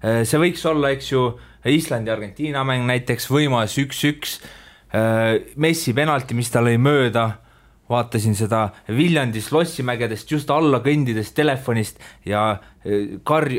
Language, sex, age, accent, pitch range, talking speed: English, male, 20-39, Finnish, 115-145 Hz, 110 wpm